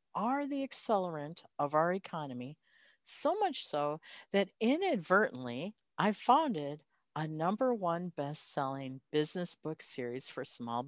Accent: American